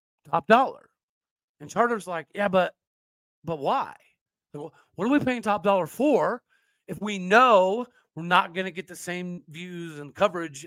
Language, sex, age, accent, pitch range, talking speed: English, male, 40-59, American, 160-215 Hz, 165 wpm